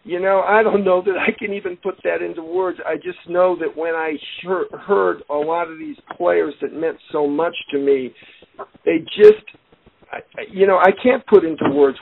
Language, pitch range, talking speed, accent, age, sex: English, 140-185 Hz, 210 wpm, American, 50-69, male